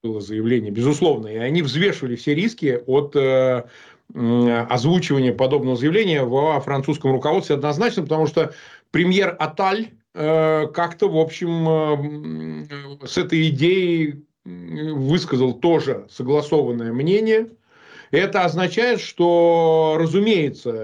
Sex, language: male, Russian